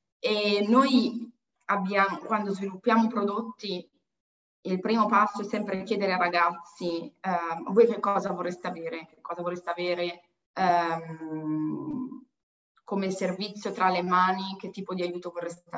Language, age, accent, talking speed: Italian, 20-39, native, 135 wpm